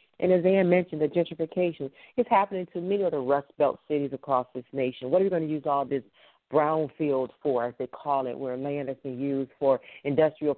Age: 40-59